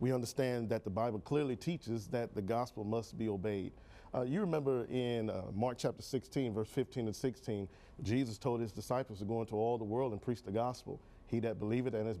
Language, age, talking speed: English, 40-59, 215 wpm